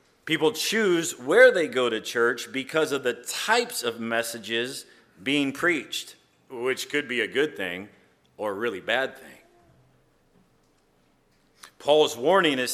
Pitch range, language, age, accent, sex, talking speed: 135-195 Hz, English, 40-59, American, male, 135 wpm